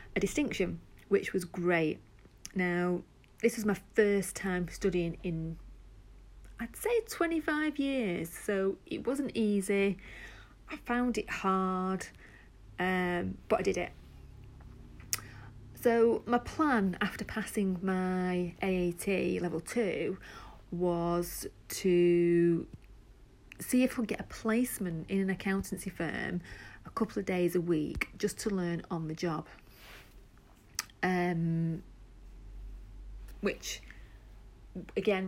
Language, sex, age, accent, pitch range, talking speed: English, female, 40-59, British, 130-200 Hz, 110 wpm